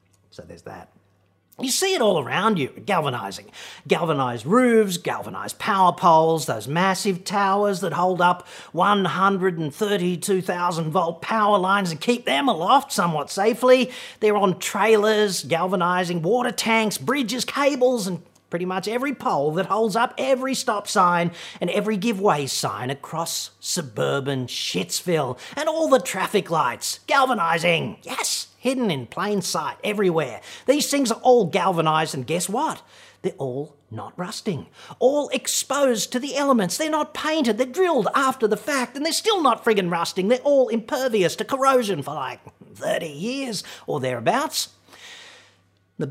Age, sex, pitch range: 40-59, male, 165-250 Hz